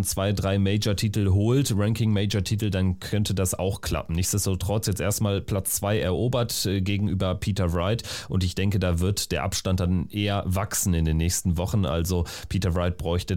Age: 30-49